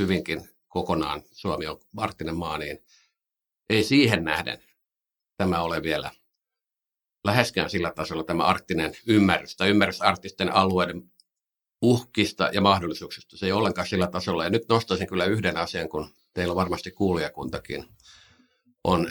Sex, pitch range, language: male, 95-120 Hz, Finnish